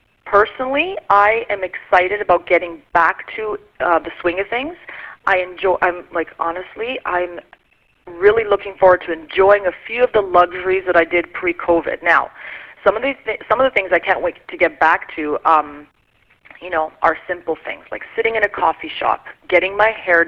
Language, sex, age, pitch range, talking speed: English, female, 30-49, 175-230 Hz, 190 wpm